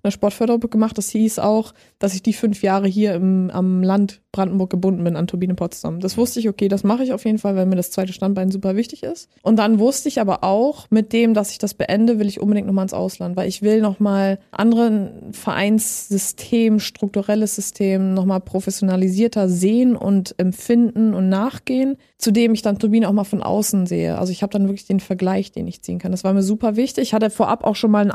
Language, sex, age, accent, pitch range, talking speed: German, female, 20-39, German, 195-225 Hz, 225 wpm